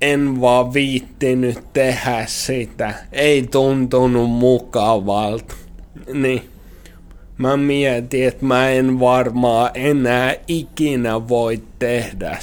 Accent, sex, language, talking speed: native, male, Finnish, 90 wpm